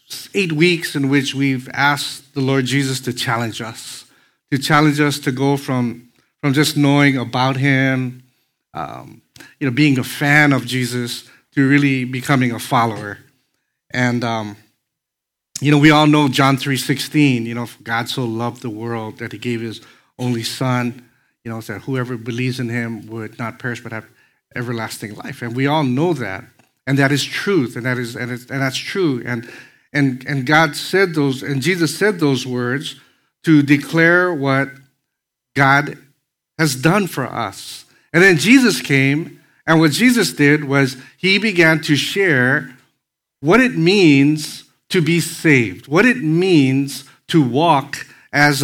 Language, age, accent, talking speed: English, 70-89, American, 165 wpm